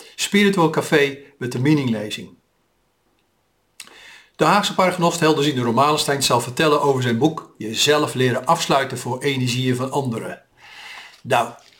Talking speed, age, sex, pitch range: 120 wpm, 50-69, male, 125-150 Hz